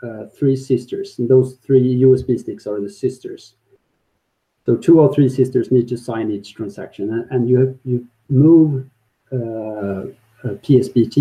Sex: male